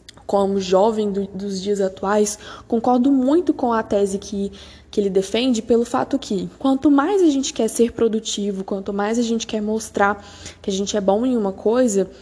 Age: 10-29